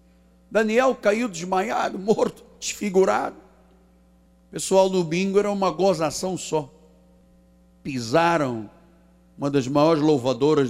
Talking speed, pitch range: 95 wpm, 140-225 Hz